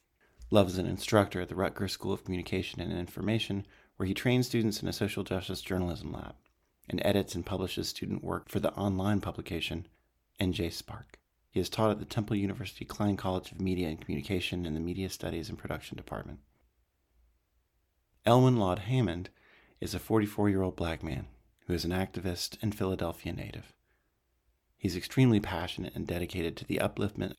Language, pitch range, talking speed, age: English, 85-105 Hz, 175 wpm, 40-59